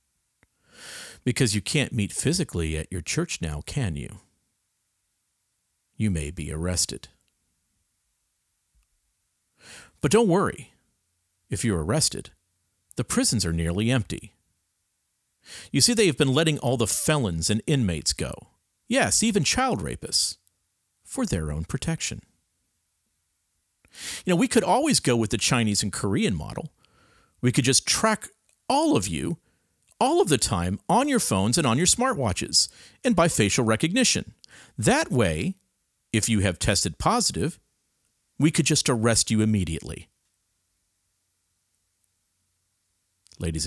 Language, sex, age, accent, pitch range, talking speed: English, male, 50-69, American, 85-120 Hz, 130 wpm